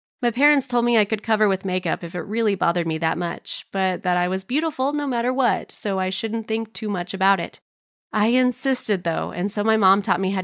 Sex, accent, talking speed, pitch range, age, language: female, American, 240 wpm, 185-245 Hz, 20-39, English